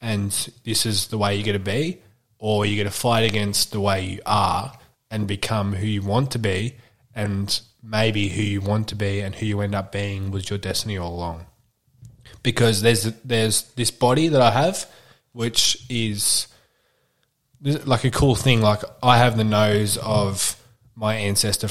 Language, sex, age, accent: English, male, 20-39, Australian